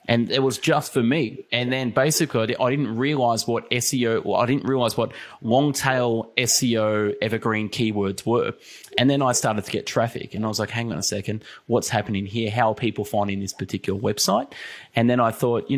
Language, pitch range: English, 105-125 Hz